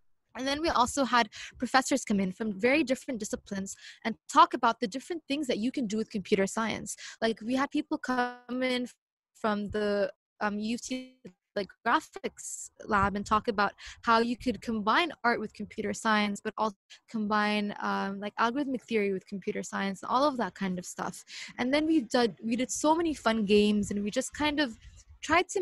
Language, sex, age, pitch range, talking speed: English, female, 20-39, 210-265 Hz, 195 wpm